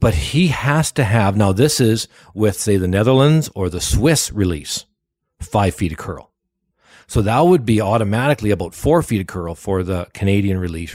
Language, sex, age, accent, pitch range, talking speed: English, male, 40-59, American, 95-125 Hz, 185 wpm